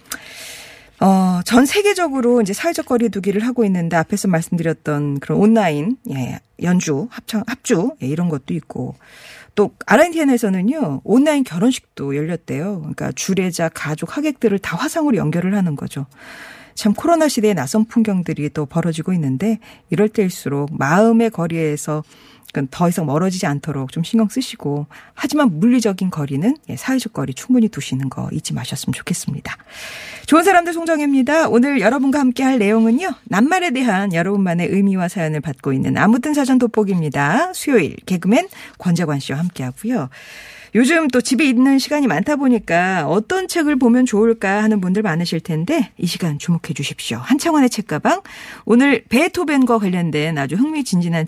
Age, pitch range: 40-59, 165-255 Hz